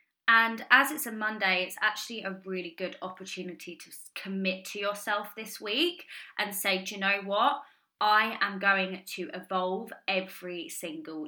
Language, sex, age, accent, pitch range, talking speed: English, female, 20-39, British, 190-250 Hz, 160 wpm